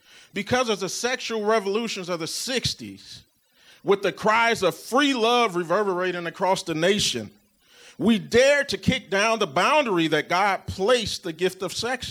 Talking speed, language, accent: 160 wpm, English, American